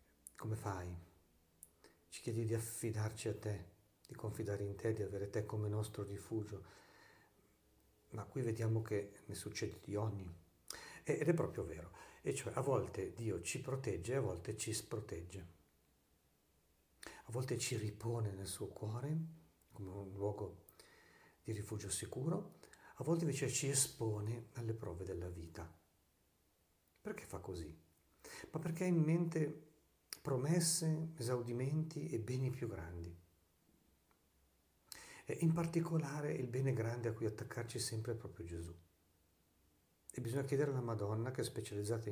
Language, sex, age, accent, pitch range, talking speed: Italian, male, 50-69, native, 85-125 Hz, 140 wpm